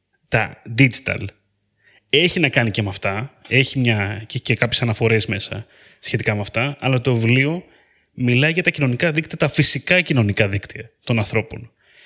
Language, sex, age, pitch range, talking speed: Greek, male, 30-49, 110-150 Hz, 165 wpm